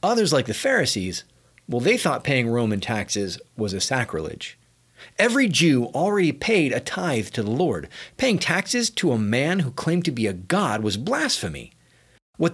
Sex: male